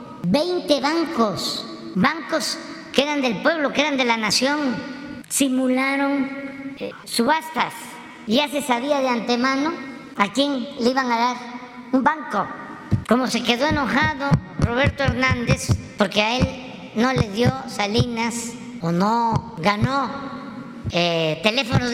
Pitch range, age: 200-275 Hz, 50-69